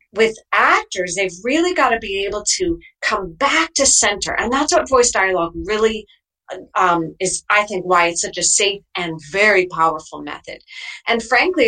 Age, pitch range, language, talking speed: 40-59, 200-315 Hz, English, 175 wpm